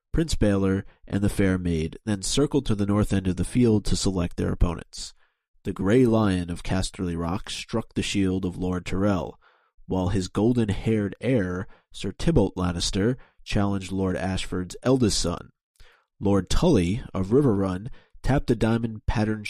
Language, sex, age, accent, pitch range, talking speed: English, male, 30-49, American, 90-110 Hz, 155 wpm